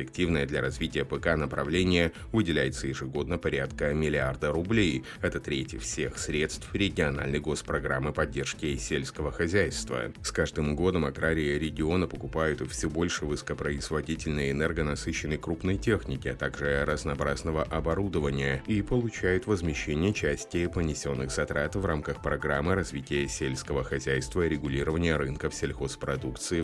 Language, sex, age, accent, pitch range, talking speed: Russian, male, 30-49, native, 70-90 Hz, 115 wpm